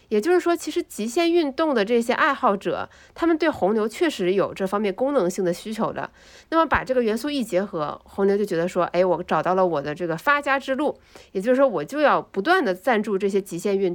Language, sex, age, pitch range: Chinese, female, 50-69, 185-270 Hz